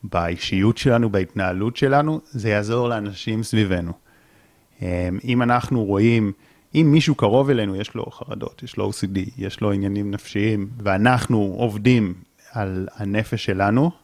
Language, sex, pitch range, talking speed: Hebrew, male, 100-120 Hz, 130 wpm